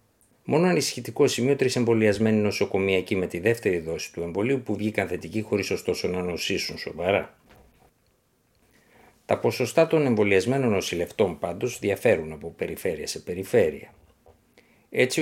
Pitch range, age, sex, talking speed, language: 95-120 Hz, 60-79, male, 125 wpm, Greek